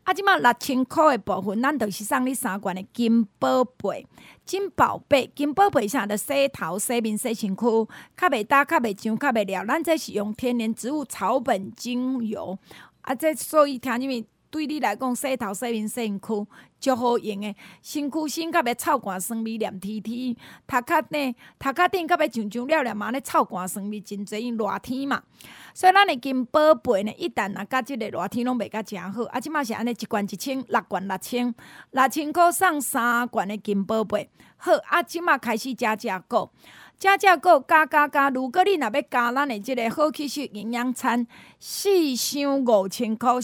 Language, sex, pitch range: Chinese, female, 215-290 Hz